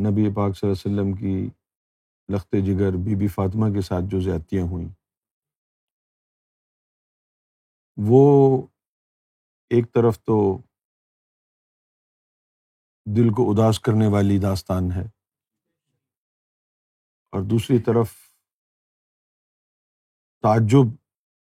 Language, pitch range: Urdu, 95-115 Hz